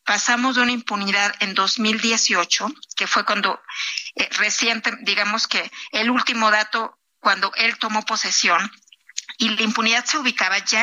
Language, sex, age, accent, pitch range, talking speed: Spanish, female, 40-59, Mexican, 205-245 Hz, 145 wpm